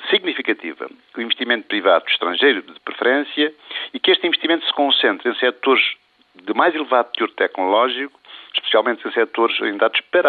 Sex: male